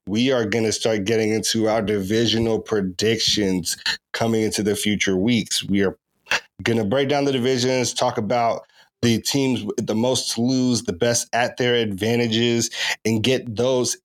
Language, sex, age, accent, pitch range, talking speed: English, male, 30-49, American, 110-125 Hz, 170 wpm